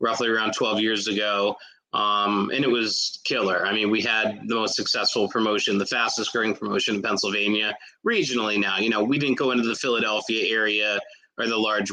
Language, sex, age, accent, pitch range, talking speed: English, male, 30-49, American, 105-120 Hz, 190 wpm